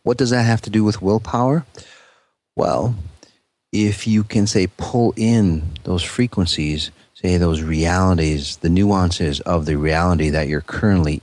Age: 40-59